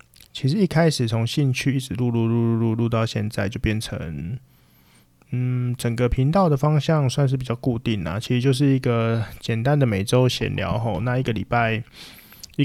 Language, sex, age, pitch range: Chinese, male, 20-39, 115-135 Hz